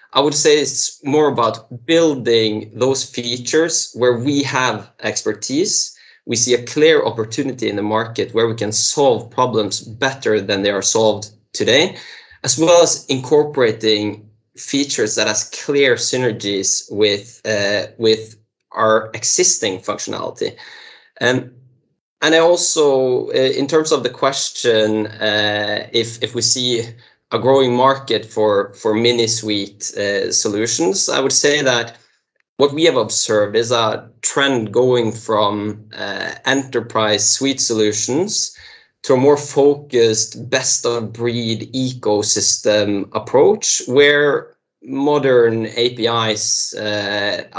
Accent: Norwegian